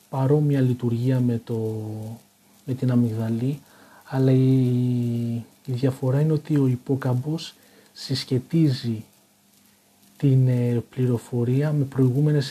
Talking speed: 100 wpm